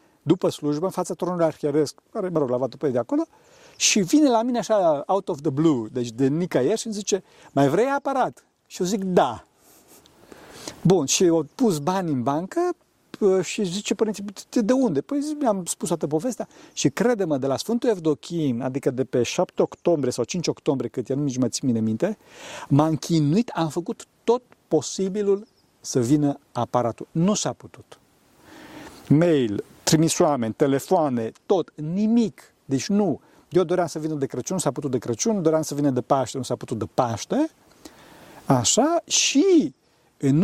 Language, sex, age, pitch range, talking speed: Romanian, male, 50-69, 140-215 Hz, 175 wpm